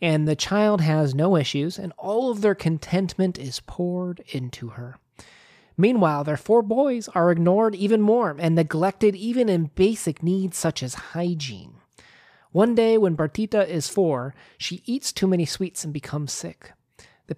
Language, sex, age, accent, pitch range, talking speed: English, male, 30-49, American, 140-190 Hz, 160 wpm